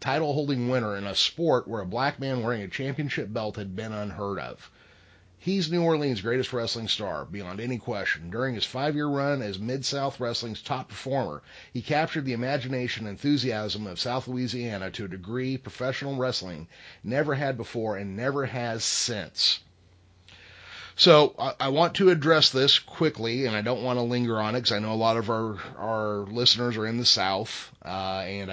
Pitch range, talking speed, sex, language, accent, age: 105-130 Hz, 180 wpm, male, English, American, 30-49